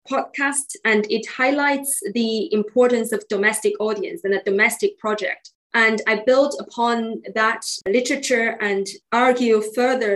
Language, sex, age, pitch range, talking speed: English, female, 20-39, 205-245 Hz, 130 wpm